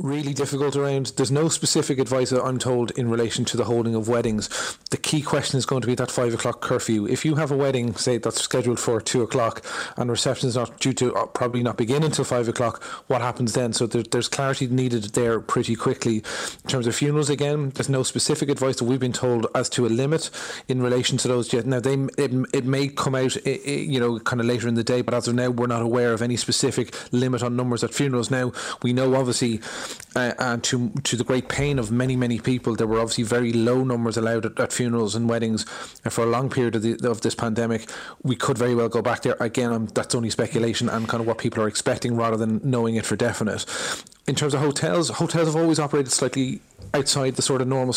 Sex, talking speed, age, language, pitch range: male, 240 wpm, 30-49, English, 115-130 Hz